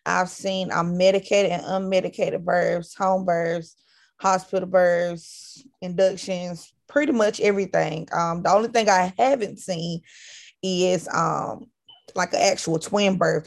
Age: 20-39